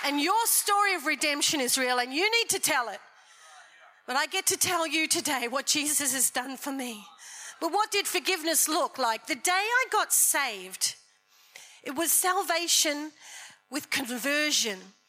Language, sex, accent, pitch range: English, female, Australian, 265-360 Hz